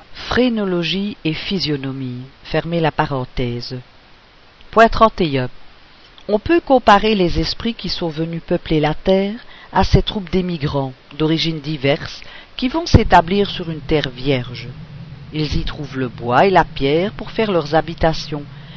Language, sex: French, female